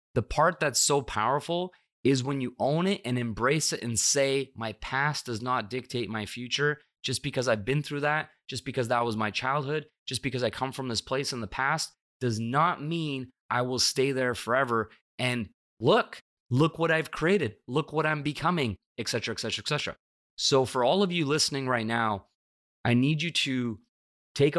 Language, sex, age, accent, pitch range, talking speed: English, male, 20-39, American, 115-145 Hz, 200 wpm